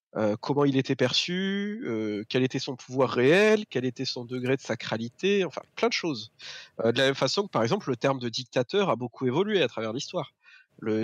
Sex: male